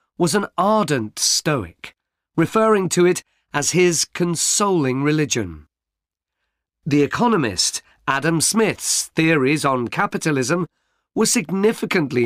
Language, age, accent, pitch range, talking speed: English, 40-59, British, 135-180 Hz, 100 wpm